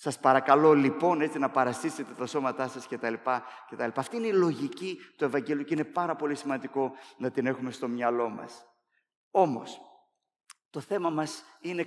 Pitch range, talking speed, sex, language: 125-180 Hz, 160 wpm, male, Greek